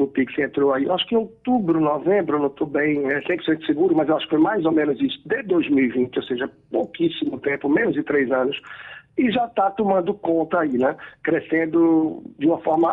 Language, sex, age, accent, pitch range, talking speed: Portuguese, male, 60-79, Brazilian, 145-210 Hz, 210 wpm